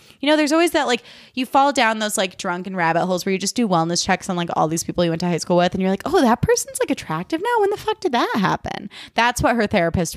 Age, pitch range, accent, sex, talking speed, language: 20-39, 175-240 Hz, American, female, 295 wpm, English